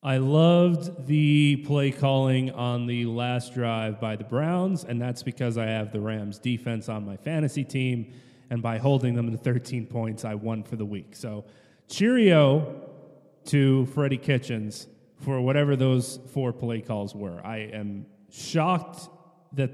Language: English